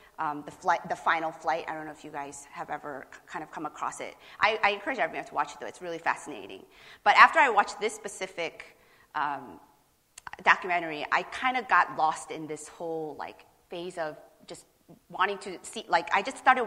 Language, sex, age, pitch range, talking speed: English, female, 30-49, 170-220 Hz, 200 wpm